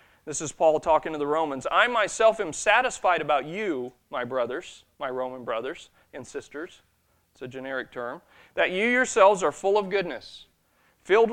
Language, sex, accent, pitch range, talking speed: English, male, American, 145-200 Hz, 170 wpm